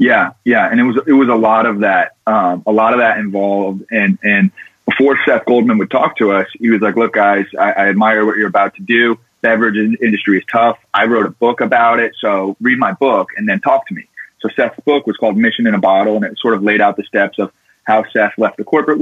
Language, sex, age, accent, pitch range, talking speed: English, male, 30-49, American, 105-135 Hz, 255 wpm